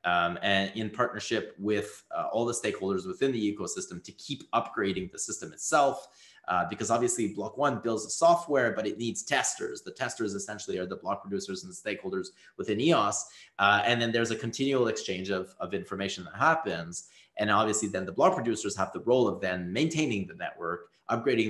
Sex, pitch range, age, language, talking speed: male, 100-130 Hz, 30-49, English, 195 wpm